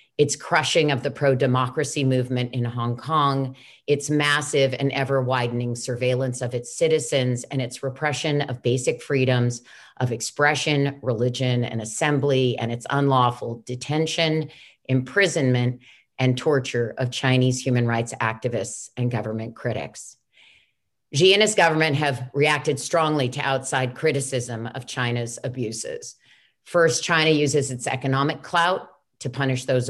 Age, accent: 40-59, American